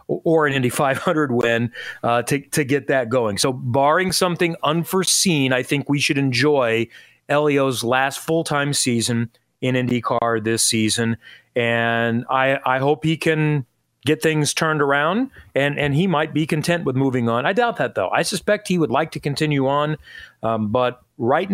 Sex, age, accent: male, 40-59, American